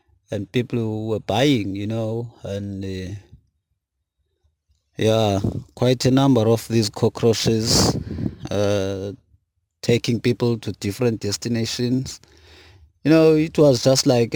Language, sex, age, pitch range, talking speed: English, male, 30-49, 100-120 Hz, 115 wpm